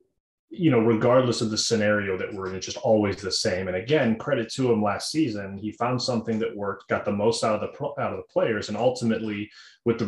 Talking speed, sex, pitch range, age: 240 wpm, male, 100-120 Hz, 30-49